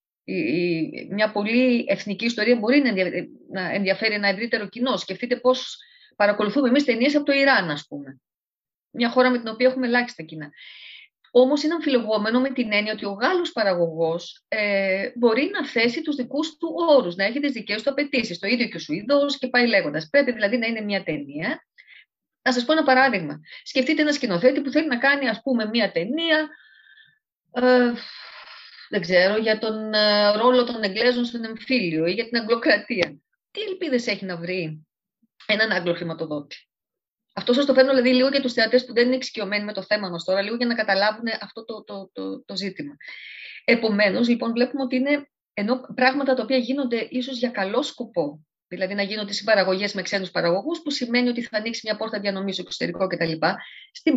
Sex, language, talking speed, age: female, Greek, 185 wpm, 30-49